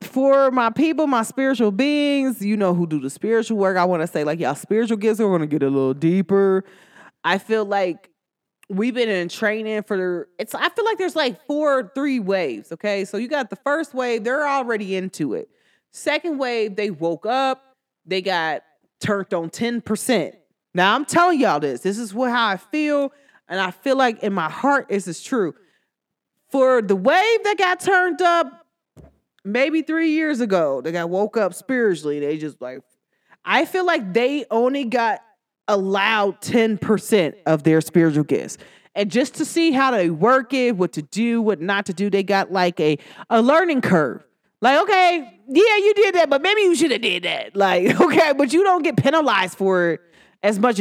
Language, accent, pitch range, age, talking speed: English, American, 190-275 Hz, 20-39, 195 wpm